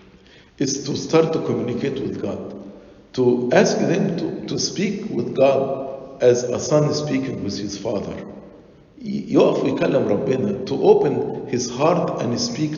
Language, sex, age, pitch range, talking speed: English, male, 50-69, 125-170 Hz, 130 wpm